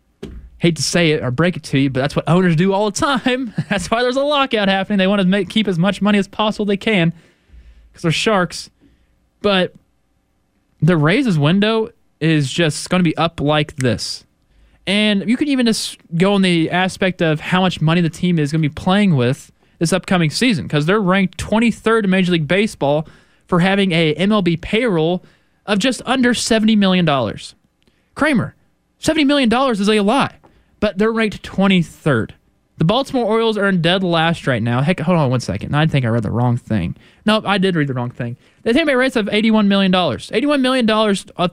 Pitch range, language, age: 145-200 Hz, English, 20-39